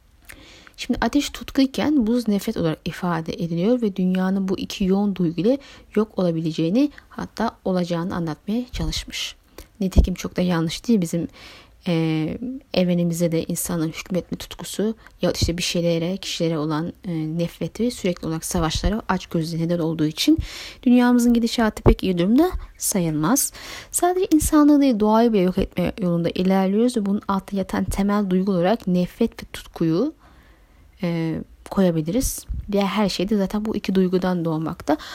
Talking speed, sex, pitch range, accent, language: 140 wpm, female, 175-230 Hz, native, Turkish